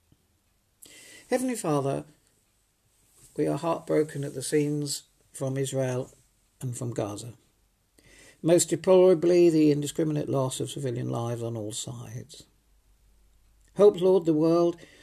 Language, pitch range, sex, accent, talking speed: English, 110-155 Hz, male, British, 110 wpm